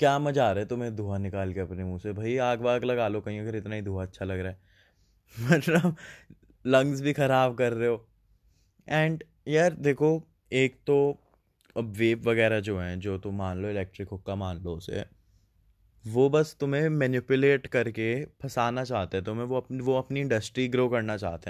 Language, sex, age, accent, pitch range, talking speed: Hindi, male, 20-39, native, 95-130 Hz, 195 wpm